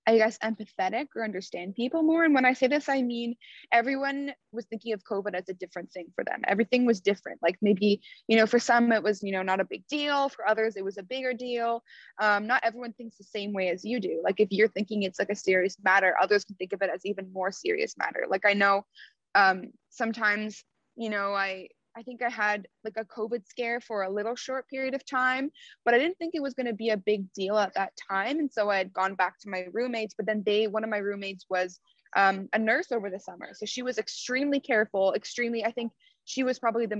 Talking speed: 245 wpm